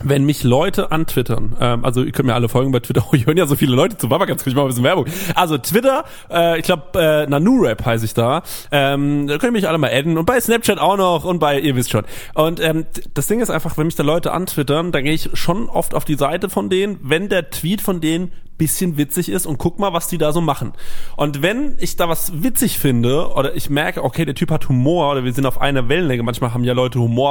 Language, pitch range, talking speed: German, 130-170 Hz, 260 wpm